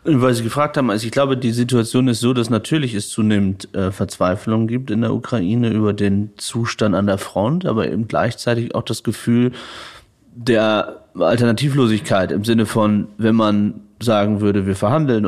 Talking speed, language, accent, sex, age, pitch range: 175 wpm, German, German, male, 30-49, 105-120 Hz